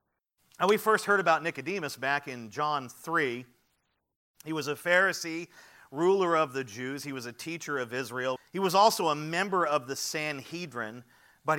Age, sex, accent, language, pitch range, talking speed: 40-59, male, American, English, 125-160 Hz, 170 wpm